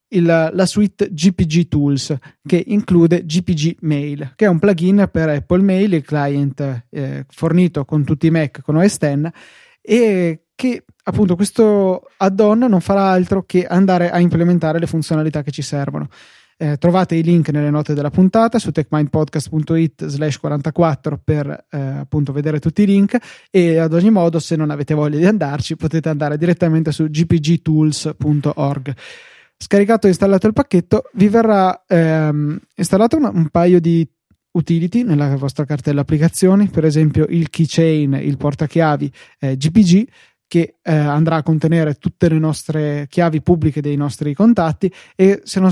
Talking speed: 155 wpm